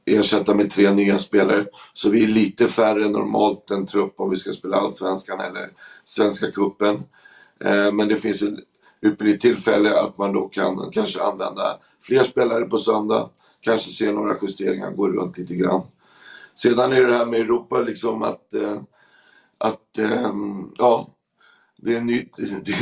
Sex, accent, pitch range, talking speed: male, native, 105-130 Hz, 160 wpm